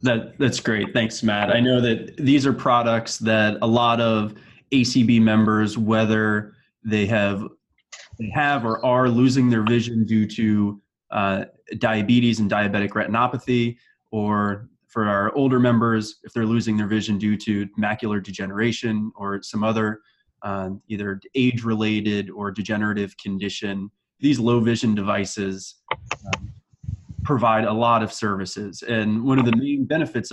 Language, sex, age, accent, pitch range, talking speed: English, male, 20-39, American, 105-120 Hz, 145 wpm